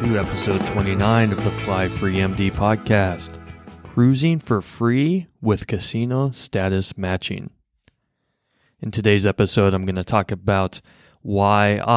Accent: American